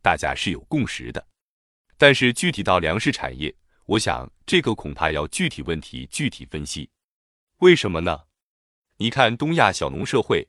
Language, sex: Chinese, male